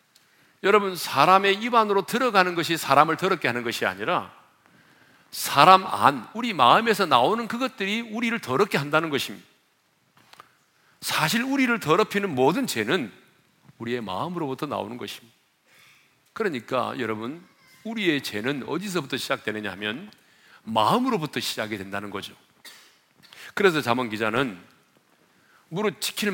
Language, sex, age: Korean, male, 40-59